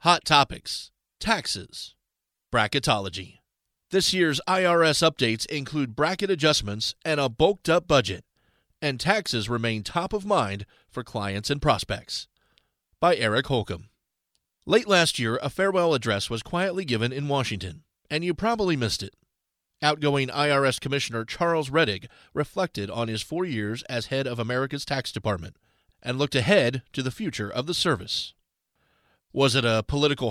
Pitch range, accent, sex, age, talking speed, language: 115-150 Hz, American, male, 40-59, 145 wpm, English